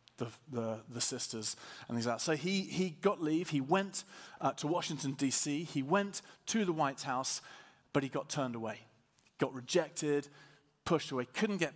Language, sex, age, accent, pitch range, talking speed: English, male, 40-59, British, 130-165 Hz, 185 wpm